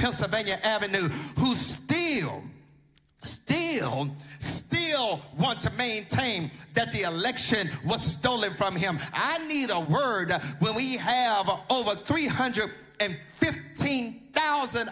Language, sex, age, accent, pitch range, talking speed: English, male, 40-59, American, 195-280 Hz, 100 wpm